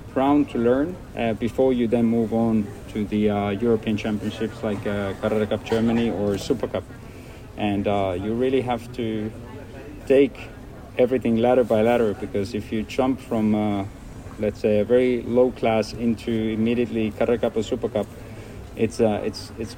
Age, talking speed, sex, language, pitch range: 30-49, 170 wpm, male, Swedish, 105-120 Hz